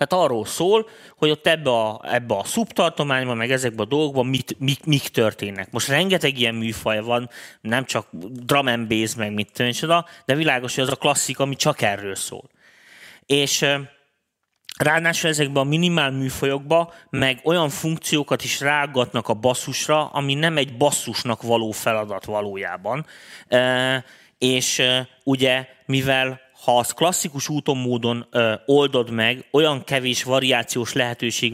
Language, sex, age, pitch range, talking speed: Hungarian, male, 30-49, 120-145 Hz, 140 wpm